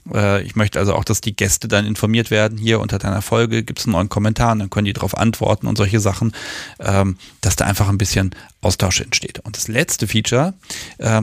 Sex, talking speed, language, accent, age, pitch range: male, 205 wpm, German, German, 40-59, 105-130 Hz